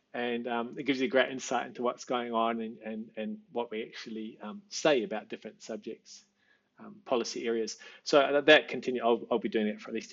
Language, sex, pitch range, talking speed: English, male, 115-165 Hz, 220 wpm